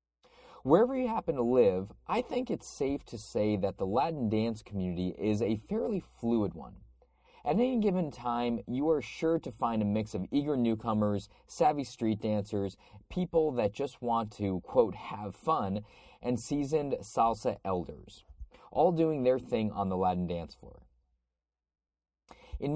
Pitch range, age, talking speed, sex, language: 95-130 Hz, 30-49, 160 wpm, male, English